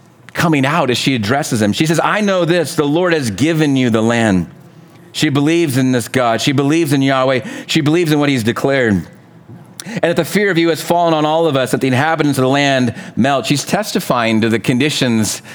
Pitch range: 120-155 Hz